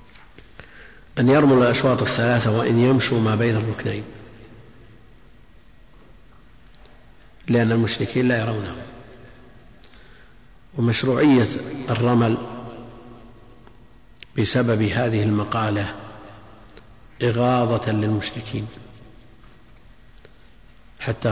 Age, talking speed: 50-69, 60 wpm